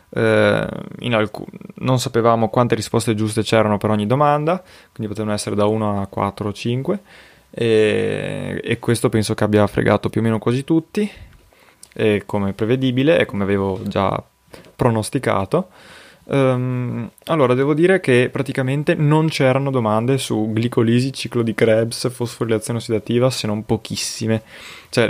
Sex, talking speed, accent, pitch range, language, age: male, 145 wpm, native, 105-120 Hz, Italian, 20-39